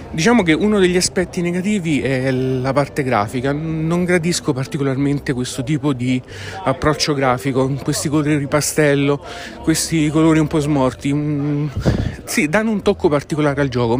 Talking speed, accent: 145 wpm, native